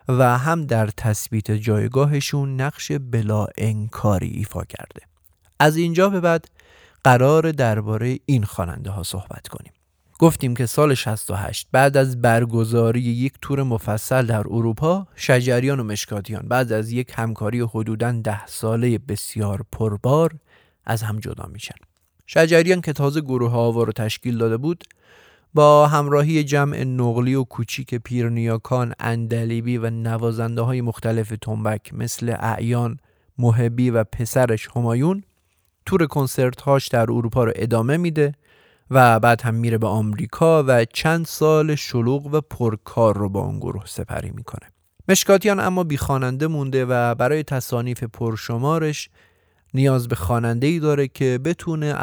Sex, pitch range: male, 110-140 Hz